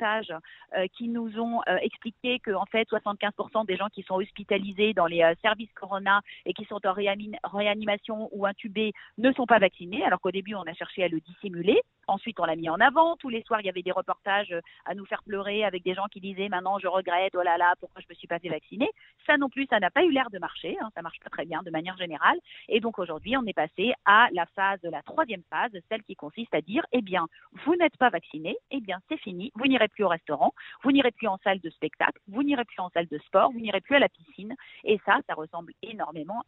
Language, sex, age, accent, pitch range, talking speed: French, female, 40-59, French, 180-240 Hz, 250 wpm